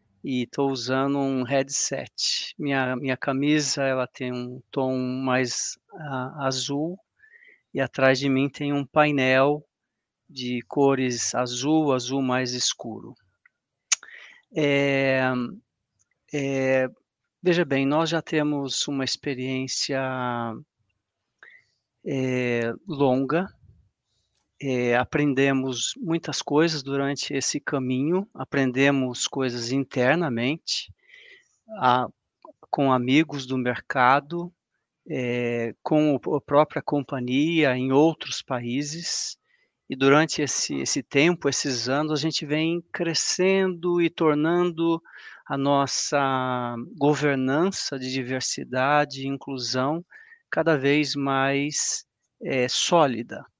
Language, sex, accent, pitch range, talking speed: Portuguese, male, Brazilian, 130-150 Hz, 95 wpm